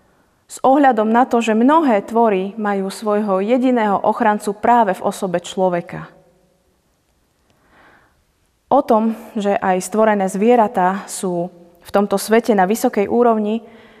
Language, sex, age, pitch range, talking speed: Slovak, female, 30-49, 190-230 Hz, 120 wpm